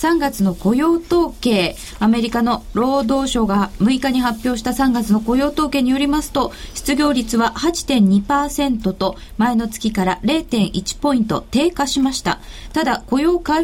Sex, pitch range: female, 215-295 Hz